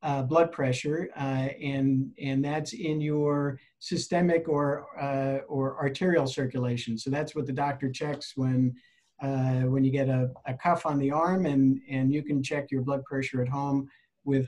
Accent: American